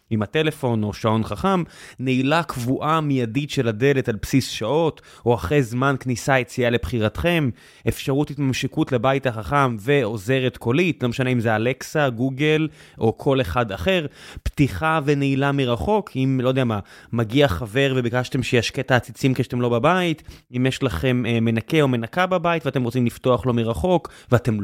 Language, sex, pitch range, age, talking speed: Hebrew, male, 125-150 Hz, 20-39, 155 wpm